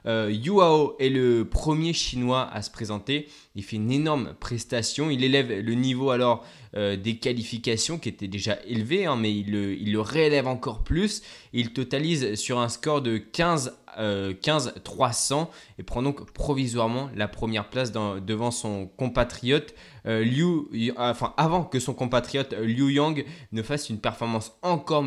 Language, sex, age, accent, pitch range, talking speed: French, male, 20-39, French, 110-140 Hz, 170 wpm